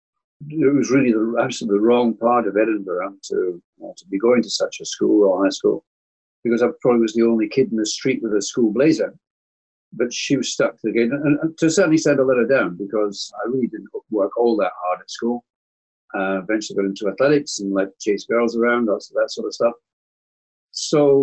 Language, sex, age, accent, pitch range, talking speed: English, male, 50-69, British, 105-140 Hz, 215 wpm